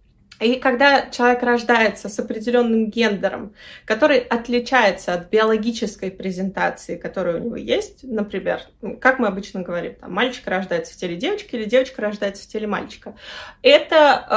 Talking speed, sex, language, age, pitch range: 140 wpm, female, Russian, 20-39, 195-260 Hz